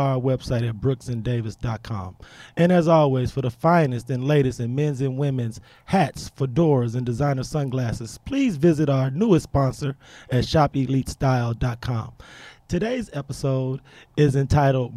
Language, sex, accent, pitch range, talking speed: English, male, American, 130-160 Hz, 130 wpm